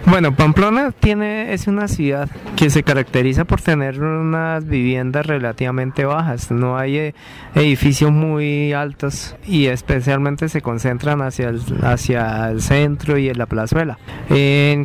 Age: 30-49